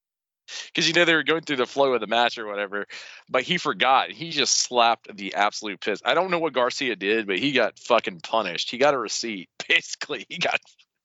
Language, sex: English, male